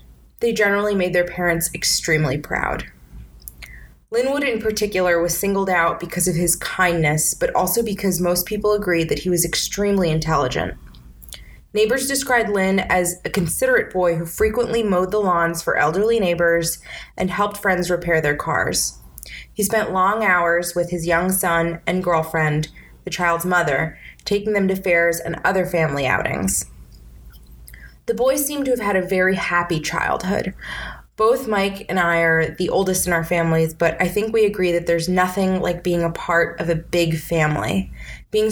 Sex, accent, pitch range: female, American, 160-195 Hz